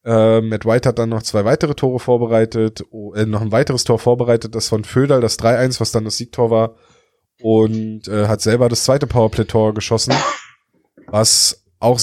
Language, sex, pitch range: German, male, 100-120 Hz